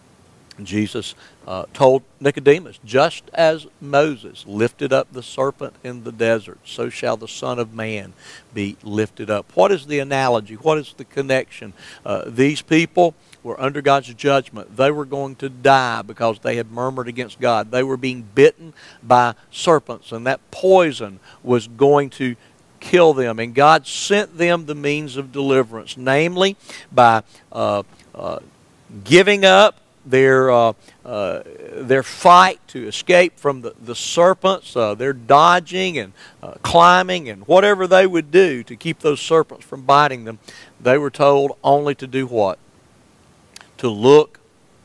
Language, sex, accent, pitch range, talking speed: English, male, American, 120-150 Hz, 155 wpm